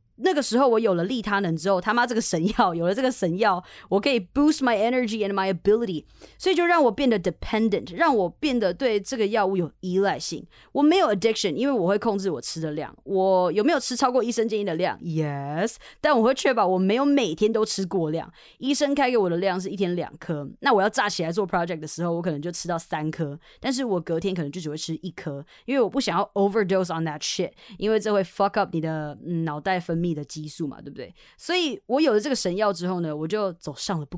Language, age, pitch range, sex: Chinese, 20-39, 175-240 Hz, female